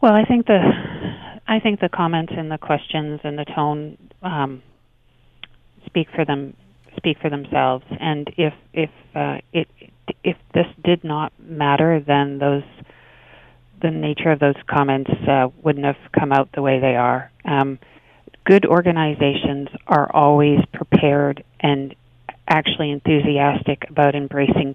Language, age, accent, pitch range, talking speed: English, 40-59, American, 140-165 Hz, 140 wpm